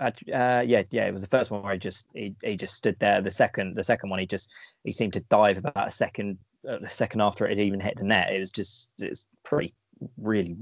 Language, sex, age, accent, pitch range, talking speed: English, male, 20-39, British, 95-115 Hz, 260 wpm